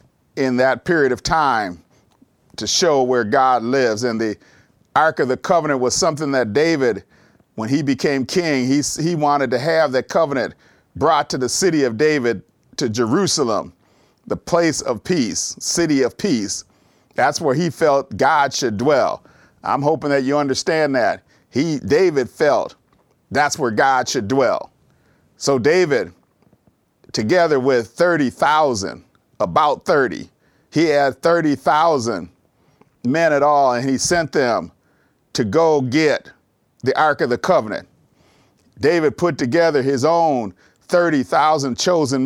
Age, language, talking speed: 40-59, English, 140 wpm